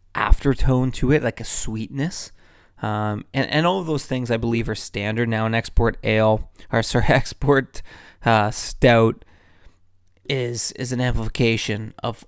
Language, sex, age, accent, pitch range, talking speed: English, male, 20-39, American, 95-125 Hz, 150 wpm